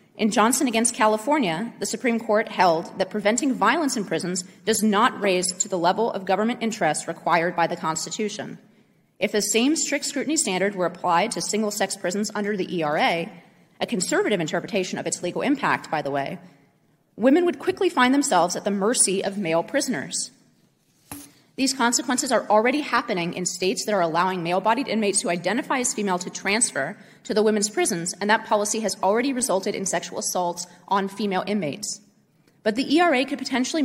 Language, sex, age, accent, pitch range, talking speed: English, female, 30-49, American, 185-245 Hz, 175 wpm